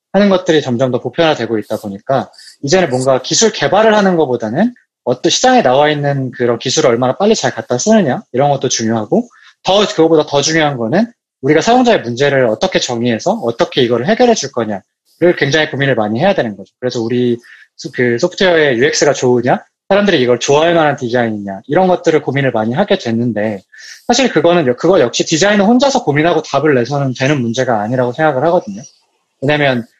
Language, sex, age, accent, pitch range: Korean, male, 20-39, native, 125-180 Hz